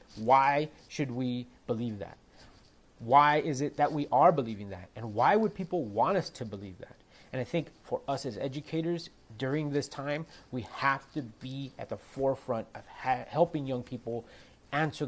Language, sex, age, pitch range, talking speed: English, male, 30-49, 115-150 Hz, 180 wpm